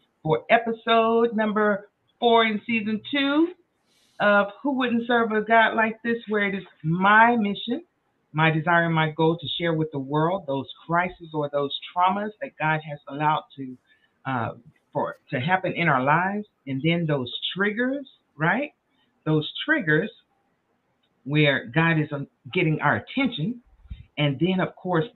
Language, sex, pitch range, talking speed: English, female, 135-210 Hz, 155 wpm